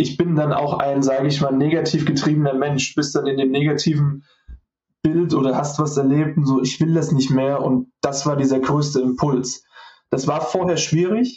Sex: male